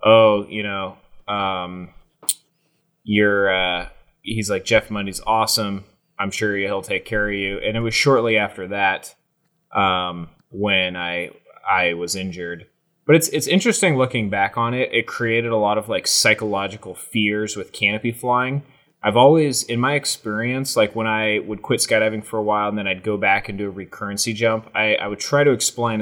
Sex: male